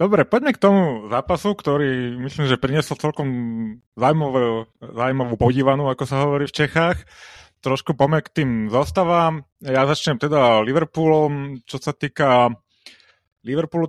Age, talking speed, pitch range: 30-49, 125 wpm, 115-150 Hz